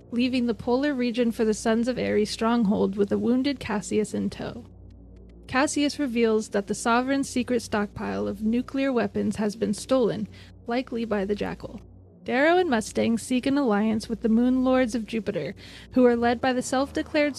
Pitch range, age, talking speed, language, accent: 215-250 Hz, 20-39, 175 wpm, English, American